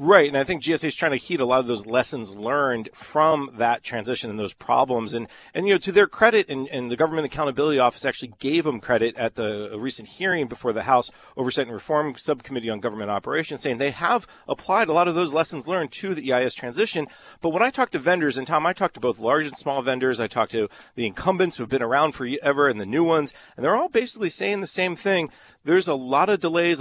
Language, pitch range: English, 125-165 Hz